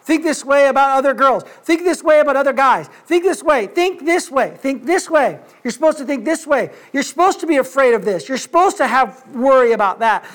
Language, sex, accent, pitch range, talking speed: English, male, American, 245-320 Hz, 250 wpm